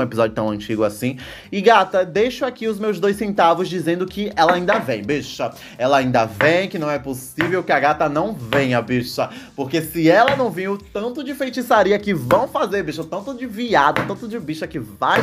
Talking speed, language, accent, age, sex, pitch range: 210 wpm, Portuguese, Brazilian, 20-39, male, 130-215 Hz